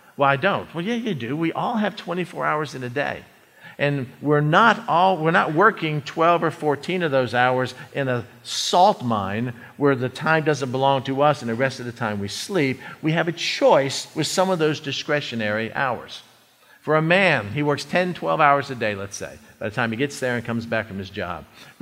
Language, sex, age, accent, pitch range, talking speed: English, male, 50-69, American, 125-170 Hz, 225 wpm